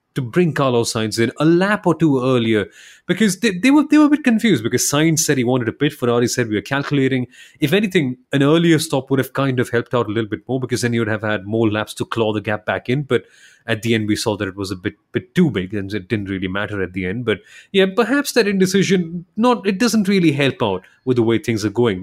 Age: 30-49